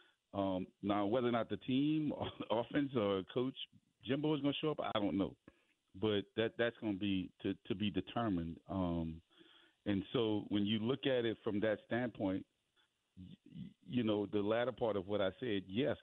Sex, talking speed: male, 195 wpm